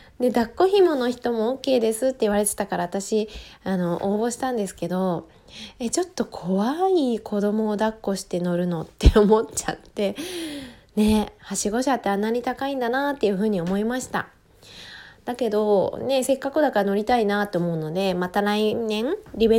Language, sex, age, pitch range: Japanese, female, 20-39, 185-260 Hz